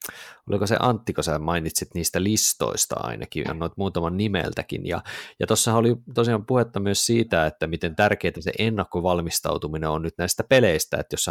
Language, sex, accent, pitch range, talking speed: Finnish, male, native, 85-110 Hz, 170 wpm